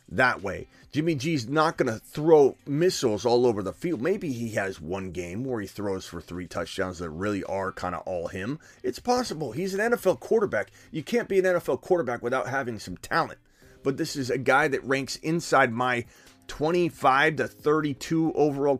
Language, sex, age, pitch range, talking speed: English, male, 30-49, 105-145 Hz, 190 wpm